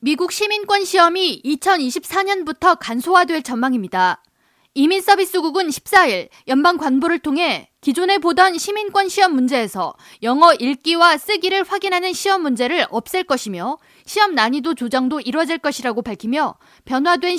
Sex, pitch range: female, 255-360 Hz